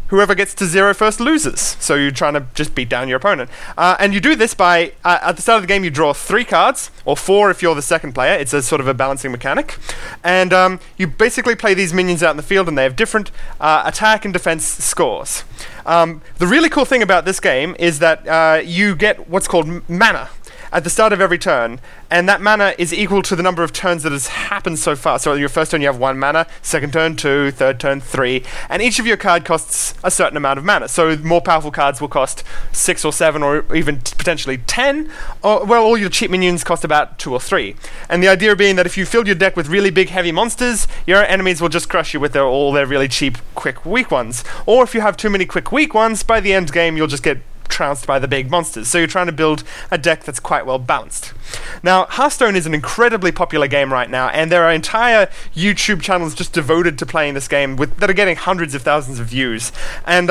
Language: English